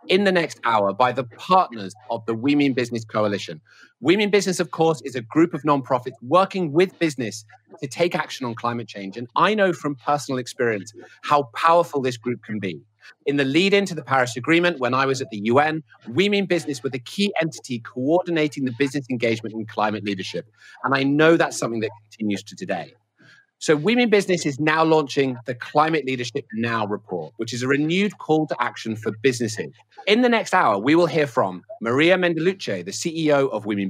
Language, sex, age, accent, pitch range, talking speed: English, male, 30-49, British, 120-165 Hz, 200 wpm